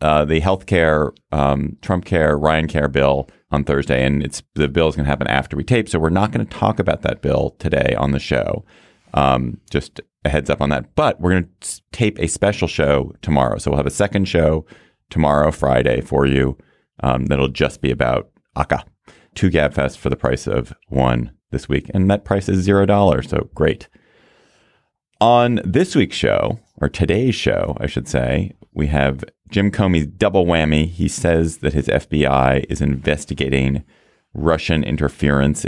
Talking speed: 185 wpm